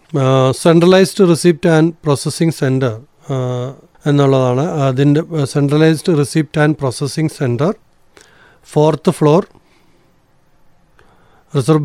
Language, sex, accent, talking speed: Malayalam, male, native, 85 wpm